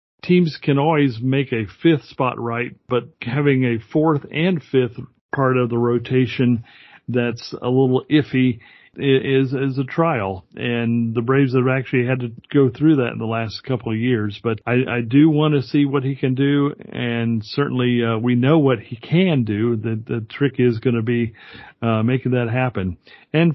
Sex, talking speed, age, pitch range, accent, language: male, 190 wpm, 40-59, 120-145 Hz, American, English